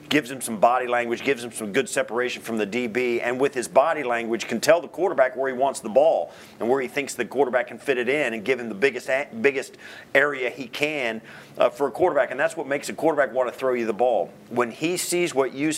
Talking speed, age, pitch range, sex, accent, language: 255 wpm, 40-59, 120-150 Hz, male, American, English